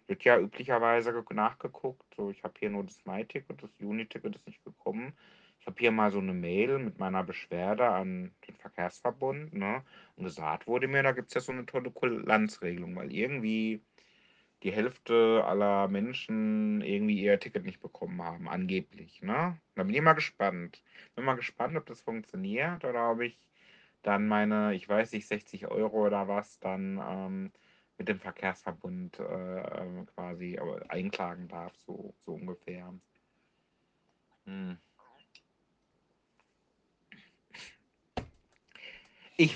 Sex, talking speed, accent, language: male, 145 wpm, German, German